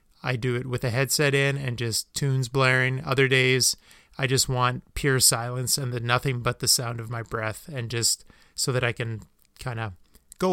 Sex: male